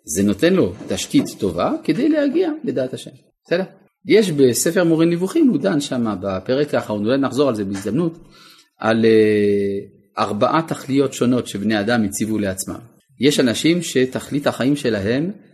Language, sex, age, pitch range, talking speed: Hebrew, male, 30-49, 115-175 Hz, 145 wpm